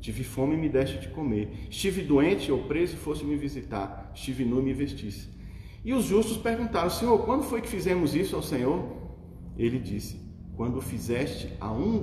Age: 40-59